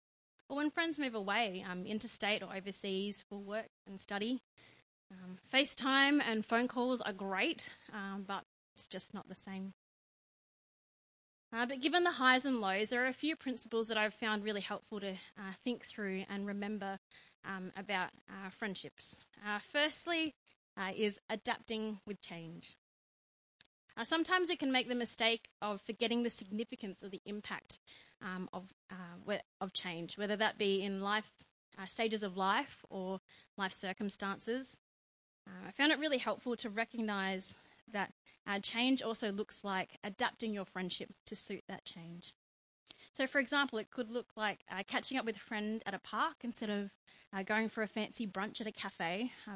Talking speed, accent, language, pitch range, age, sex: 170 wpm, Australian, English, 195-240 Hz, 20-39, female